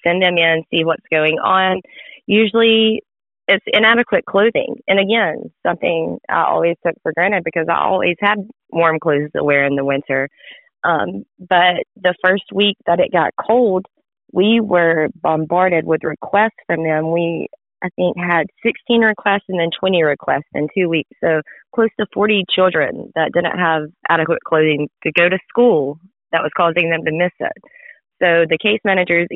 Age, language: 30-49, English